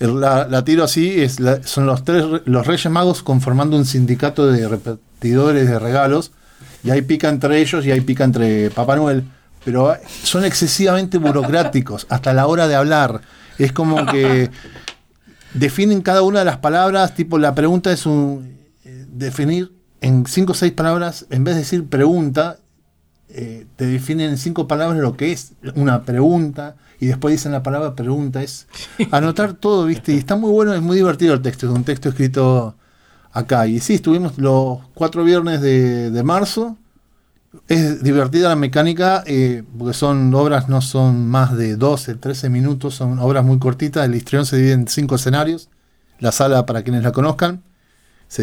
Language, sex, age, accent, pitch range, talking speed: Spanish, male, 50-69, Argentinian, 125-160 Hz, 175 wpm